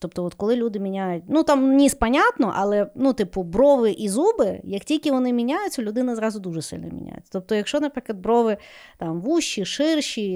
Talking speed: 180 wpm